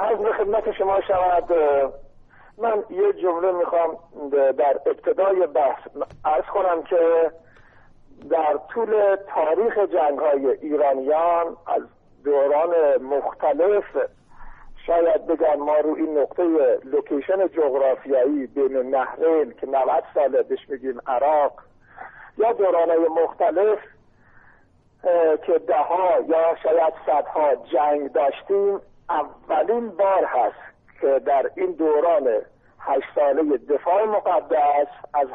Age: 50-69